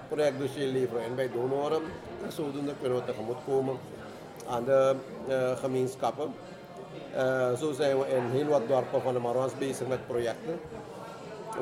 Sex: male